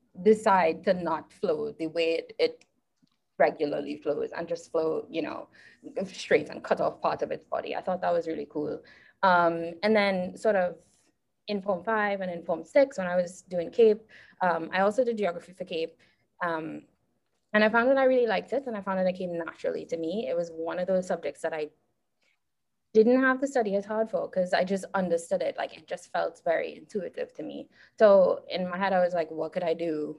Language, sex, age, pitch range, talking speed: English, female, 20-39, 170-230 Hz, 220 wpm